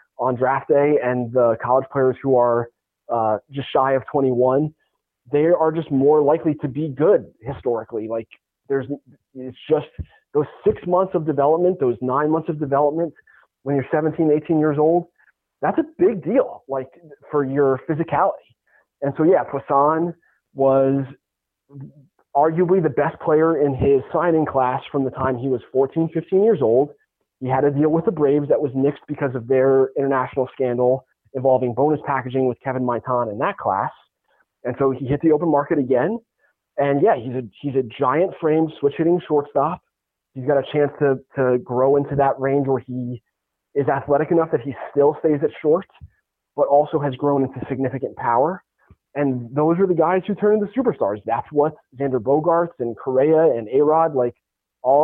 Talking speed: 180 wpm